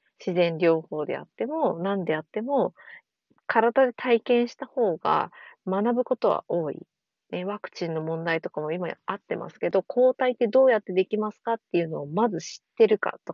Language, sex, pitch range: Japanese, female, 170-230 Hz